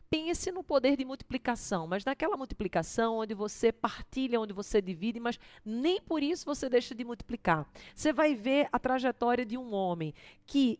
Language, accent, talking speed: Portuguese, Brazilian, 170 wpm